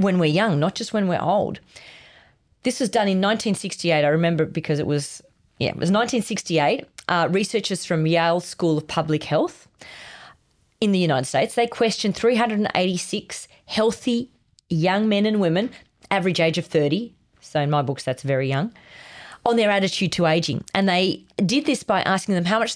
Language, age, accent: English, 30-49, Australian